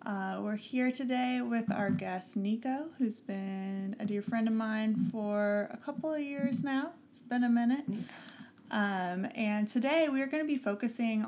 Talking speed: 175 wpm